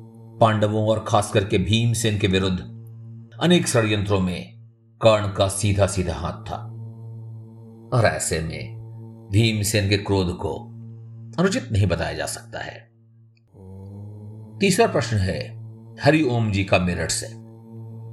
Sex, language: male, Hindi